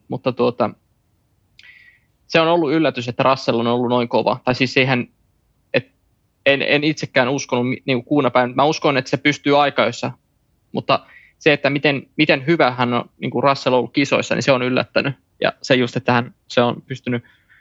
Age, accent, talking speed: 20-39, native, 175 wpm